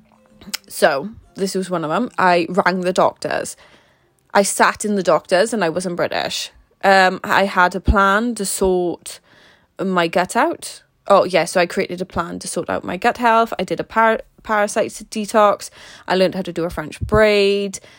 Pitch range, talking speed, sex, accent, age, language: 180-215 Hz, 185 wpm, female, British, 20-39, English